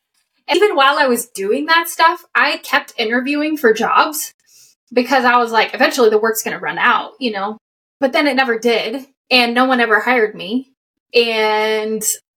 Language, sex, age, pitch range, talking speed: English, female, 10-29, 215-255 Hz, 175 wpm